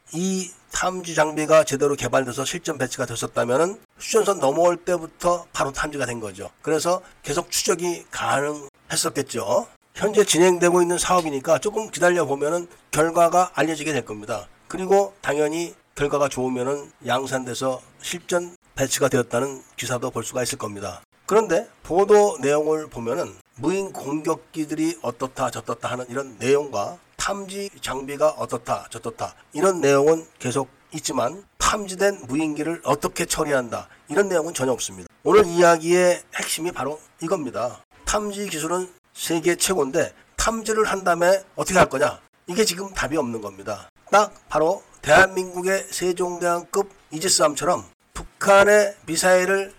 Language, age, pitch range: Korean, 40-59, 140-190 Hz